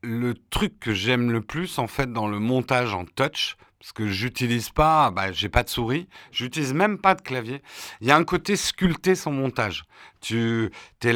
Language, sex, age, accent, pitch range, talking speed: French, male, 50-69, French, 105-145 Hz, 200 wpm